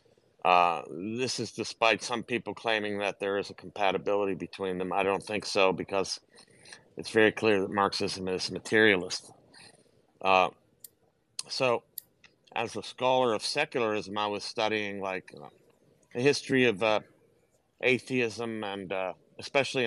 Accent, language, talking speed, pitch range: American, English, 140 wpm, 100-115 Hz